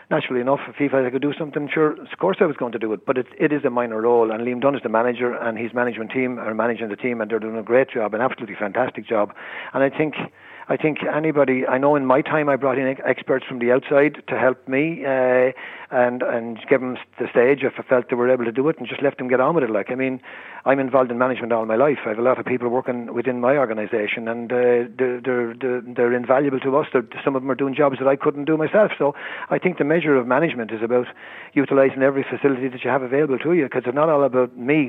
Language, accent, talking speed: English, Irish, 270 wpm